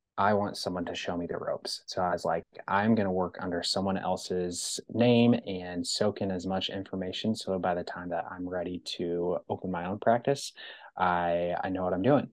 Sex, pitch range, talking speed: male, 90-95 Hz, 215 wpm